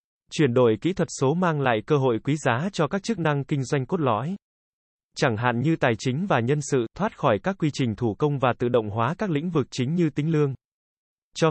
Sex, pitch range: male, 125-160 Hz